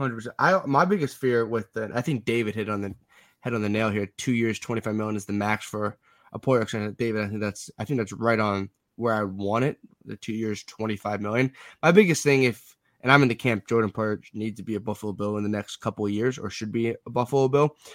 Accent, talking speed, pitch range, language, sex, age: American, 245 wpm, 110-130 Hz, English, male, 20-39